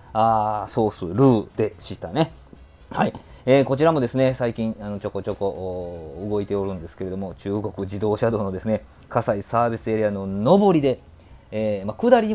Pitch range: 95-120 Hz